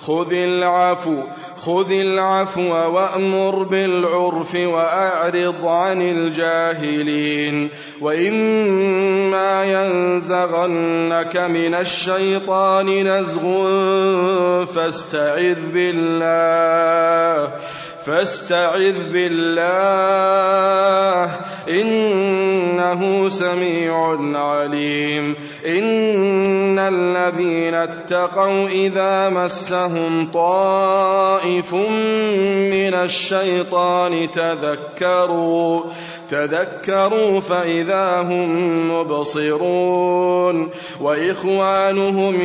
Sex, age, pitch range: male, 20-39, 165-195 Hz